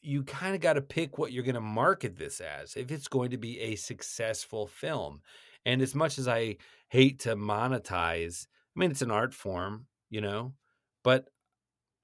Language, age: English, 40-59